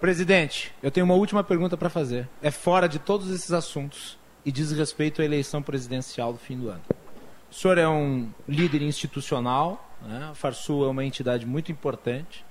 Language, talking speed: Portuguese, 180 wpm